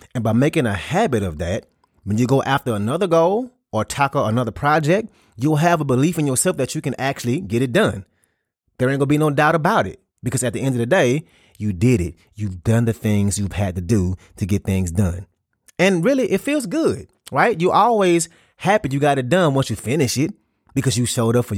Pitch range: 105-140 Hz